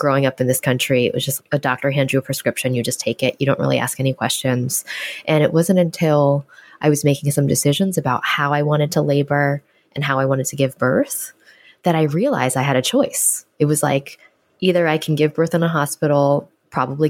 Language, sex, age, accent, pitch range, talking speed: English, female, 20-39, American, 130-155 Hz, 230 wpm